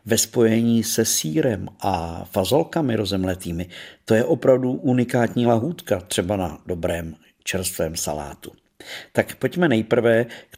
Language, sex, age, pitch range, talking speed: Czech, male, 50-69, 100-115 Hz, 120 wpm